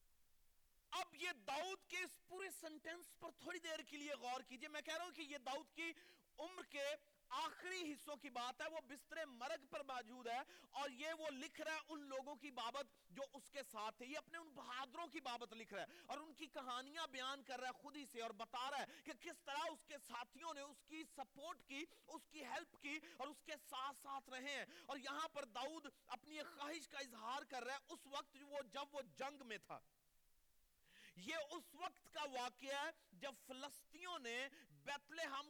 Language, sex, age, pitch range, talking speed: Urdu, male, 40-59, 255-315 Hz, 65 wpm